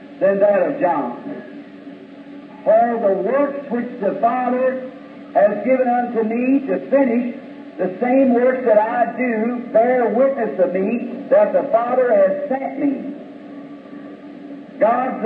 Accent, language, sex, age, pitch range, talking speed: American, English, male, 60-79, 230-285 Hz, 130 wpm